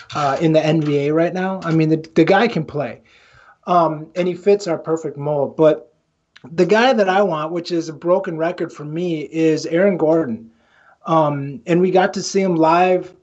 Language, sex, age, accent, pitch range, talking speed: English, male, 30-49, American, 150-175 Hz, 200 wpm